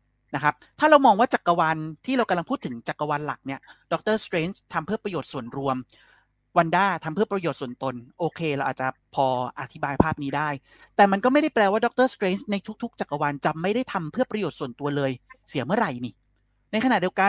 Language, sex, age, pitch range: Thai, male, 30-49, 135-205 Hz